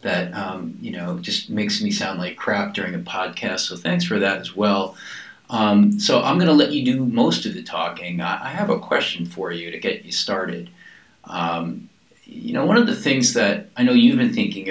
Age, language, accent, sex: 40-59, English, American, male